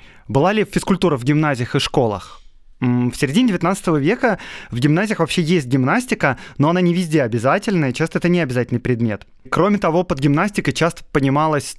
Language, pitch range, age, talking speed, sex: Russian, 135-175 Hz, 20-39, 170 wpm, male